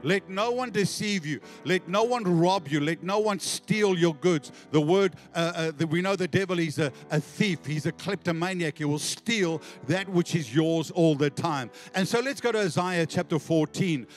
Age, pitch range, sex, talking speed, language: 50-69, 160-200 Hz, male, 210 wpm, English